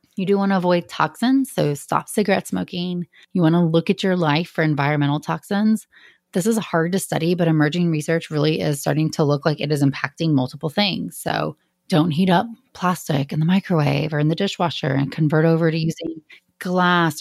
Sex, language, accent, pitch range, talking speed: female, English, American, 155-185 Hz, 200 wpm